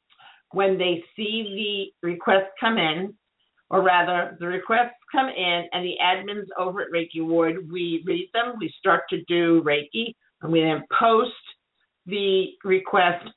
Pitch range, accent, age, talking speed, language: 165-210 Hz, American, 50-69, 155 wpm, English